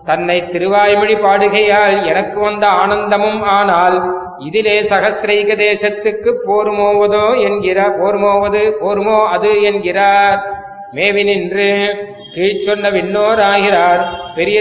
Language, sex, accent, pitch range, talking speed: Tamil, male, native, 185-210 Hz, 80 wpm